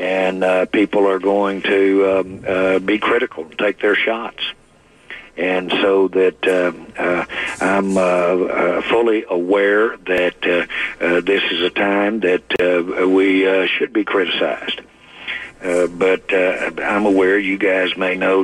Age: 60-79